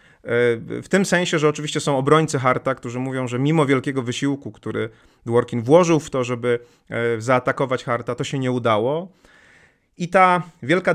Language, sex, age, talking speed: Polish, male, 30-49, 160 wpm